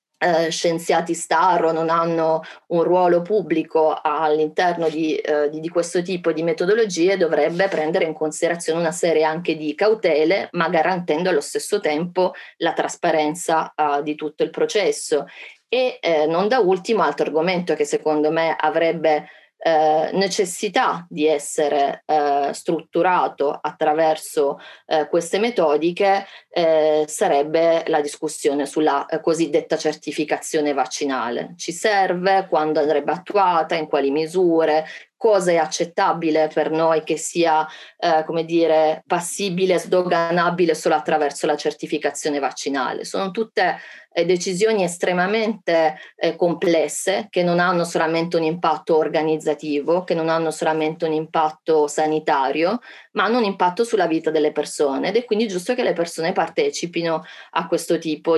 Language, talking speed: Italian, 135 wpm